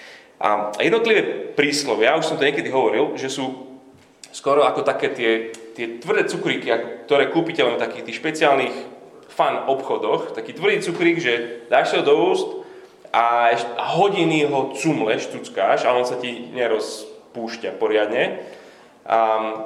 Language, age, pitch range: Slovak, 20-39, 115-185 Hz